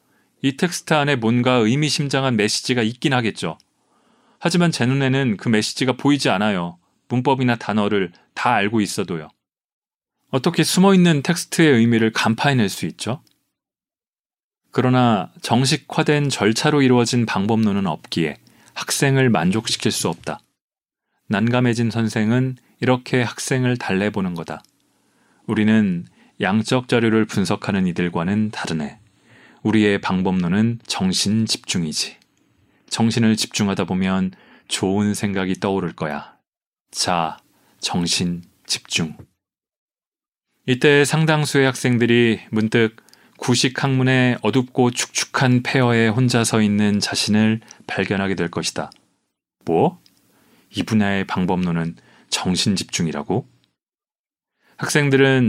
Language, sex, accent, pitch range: Korean, male, native, 105-130 Hz